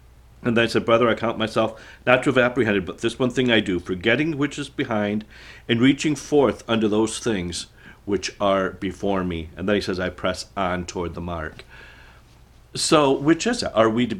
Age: 40-59